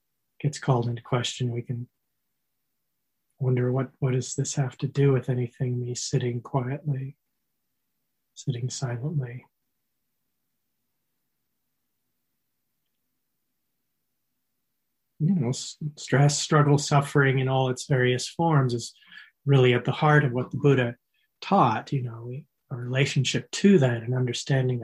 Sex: male